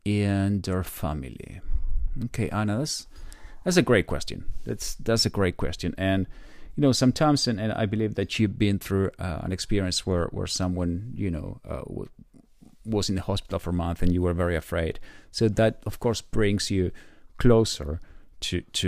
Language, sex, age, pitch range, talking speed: English, male, 40-59, 85-110 Hz, 180 wpm